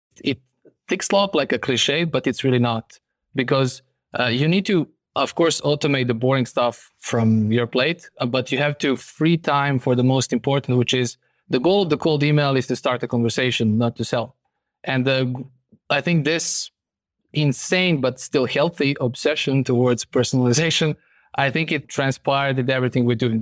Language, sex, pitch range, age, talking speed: English, male, 120-140 Hz, 20-39, 180 wpm